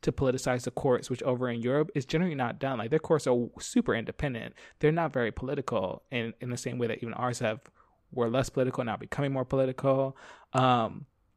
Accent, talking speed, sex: American, 205 wpm, male